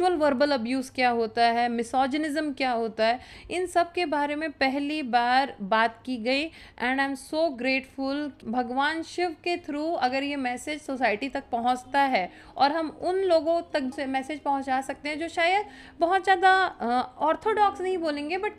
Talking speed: 170 wpm